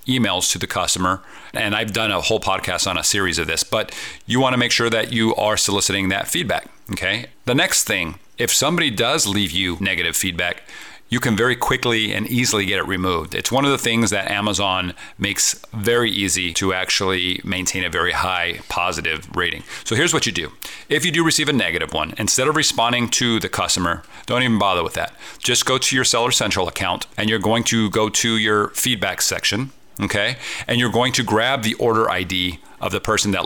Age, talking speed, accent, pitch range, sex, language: 40-59, 210 wpm, American, 95-120 Hz, male, English